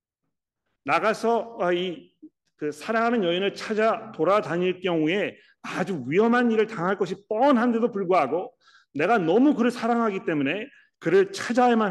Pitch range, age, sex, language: 135-200 Hz, 40-59, male, Korean